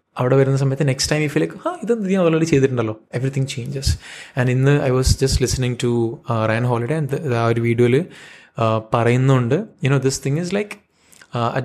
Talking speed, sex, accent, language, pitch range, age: 225 wpm, male, native, Malayalam, 110-140 Hz, 20-39